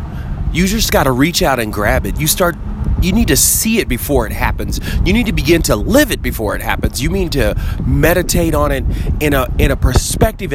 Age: 30-49